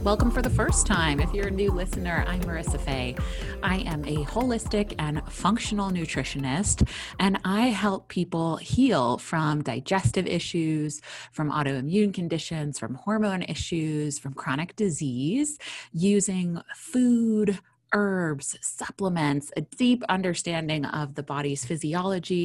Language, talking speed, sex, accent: English, 130 wpm, female, American